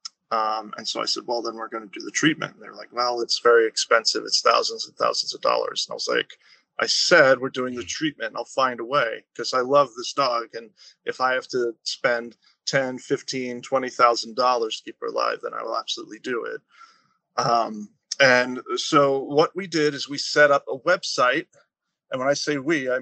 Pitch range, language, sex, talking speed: 125-175 Hz, English, male, 215 wpm